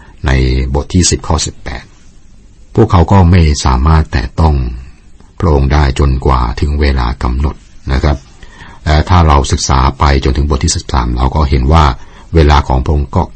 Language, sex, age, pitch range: Thai, male, 60-79, 65-85 Hz